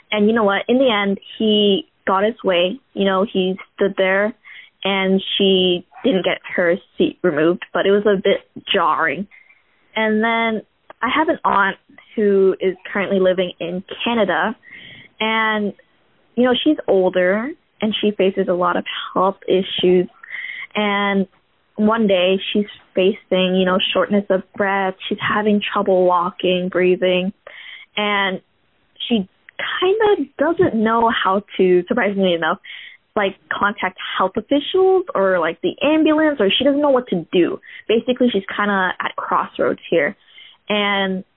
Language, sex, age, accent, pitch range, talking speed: English, female, 10-29, American, 185-225 Hz, 145 wpm